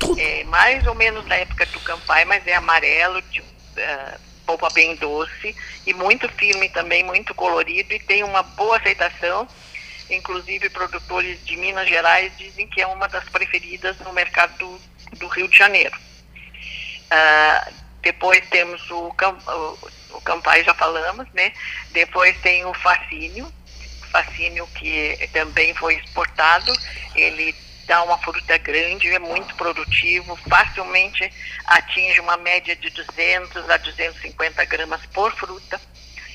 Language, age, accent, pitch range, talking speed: Portuguese, 50-69, Brazilian, 165-195 Hz, 135 wpm